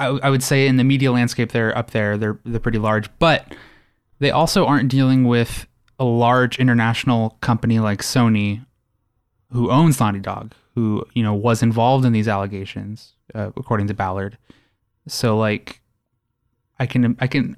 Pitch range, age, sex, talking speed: 110-135 Hz, 20-39, male, 165 wpm